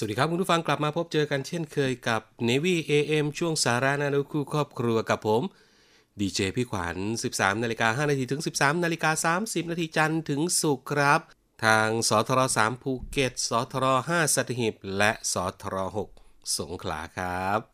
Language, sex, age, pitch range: Thai, male, 30-49, 95-135 Hz